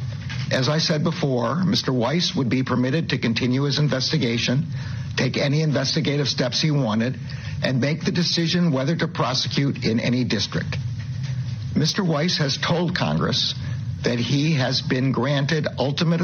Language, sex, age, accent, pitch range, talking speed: English, male, 60-79, American, 125-150 Hz, 150 wpm